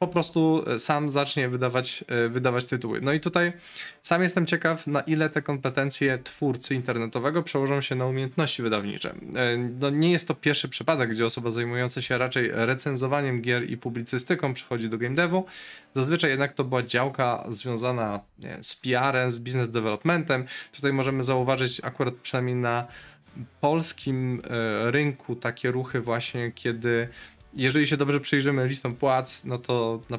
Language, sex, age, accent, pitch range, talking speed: Polish, male, 20-39, native, 120-145 Hz, 150 wpm